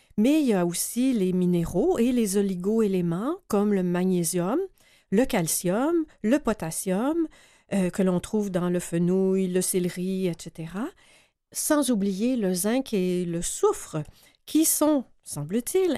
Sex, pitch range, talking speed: female, 185-255 Hz, 140 wpm